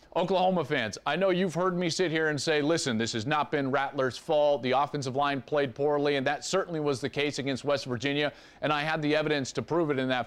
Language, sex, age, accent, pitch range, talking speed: English, male, 40-59, American, 140-185 Hz, 245 wpm